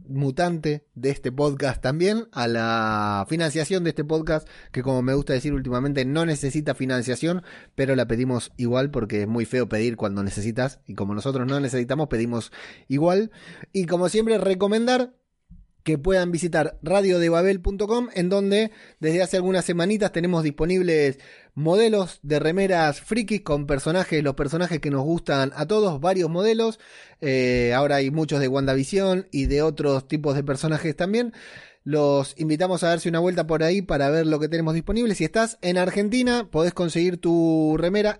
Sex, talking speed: male, 165 wpm